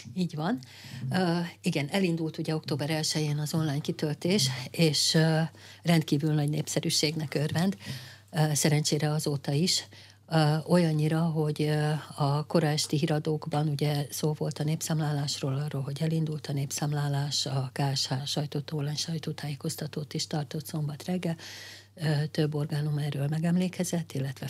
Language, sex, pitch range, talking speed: Hungarian, female, 140-155 Hz, 125 wpm